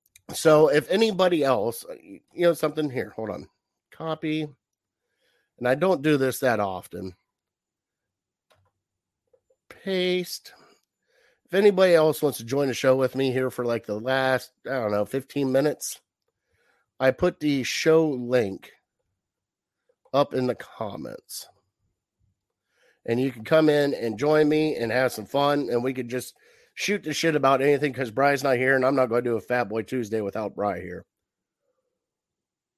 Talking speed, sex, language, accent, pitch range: 155 wpm, male, English, American, 125-160 Hz